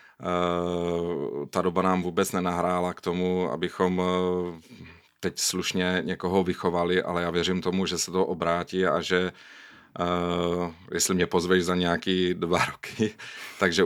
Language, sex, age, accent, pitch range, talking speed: Czech, male, 40-59, native, 85-90 Hz, 130 wpm